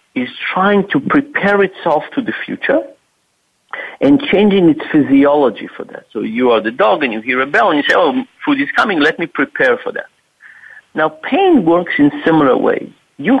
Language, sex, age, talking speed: English, male, 50-69, 195 wpm